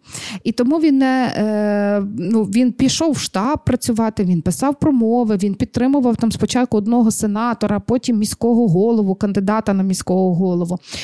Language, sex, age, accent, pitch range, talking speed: Ukrainian, female, 20-39, native, 190-235 Hz, 125 wpm